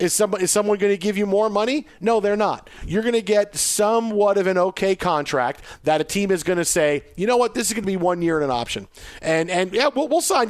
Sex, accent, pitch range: male, American, 155-205 Hz